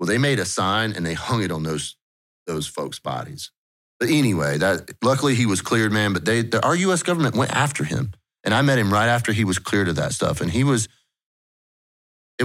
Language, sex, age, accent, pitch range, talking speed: English, male, 30-49, American, 90-130 Hz, 220 wpm